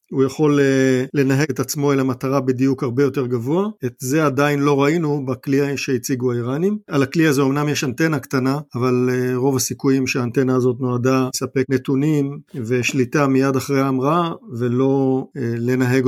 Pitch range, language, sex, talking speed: 130-150 Hz, Hebrew, male, 150 wpm